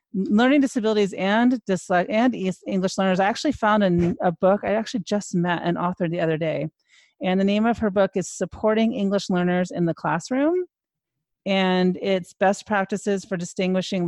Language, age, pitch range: English, 40-59, 165-195 Hz